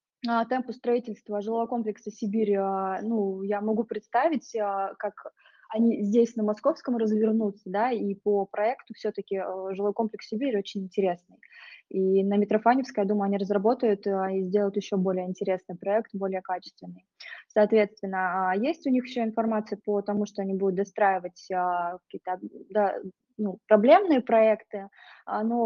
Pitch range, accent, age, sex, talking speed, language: 195-225 Hz, native, 20-39, female, 135 wpm, Russian